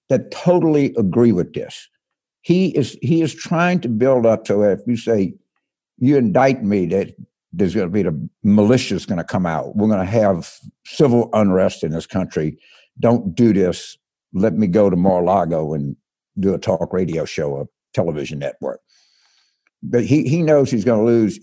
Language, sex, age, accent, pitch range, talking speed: English, male, 60-79, American, 105-140 Hz, 180 wpm